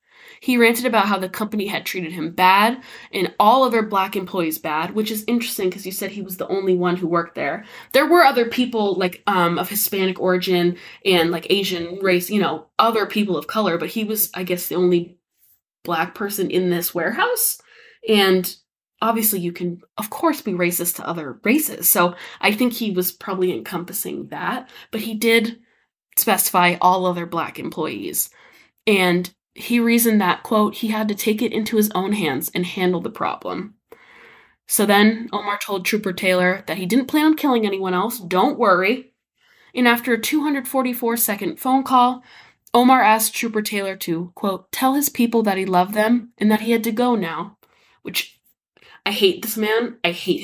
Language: English